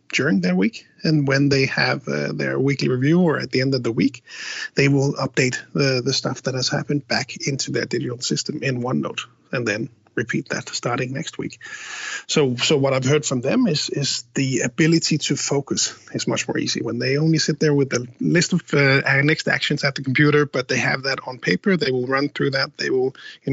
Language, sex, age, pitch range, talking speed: English, male, 30-49, 130-155 Hz, 220 wpm